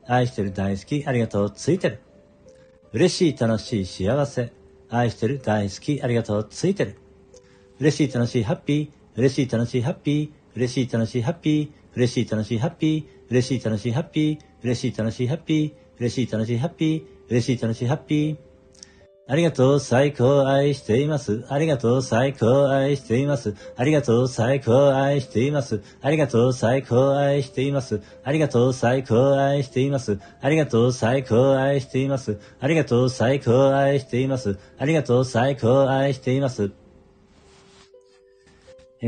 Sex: male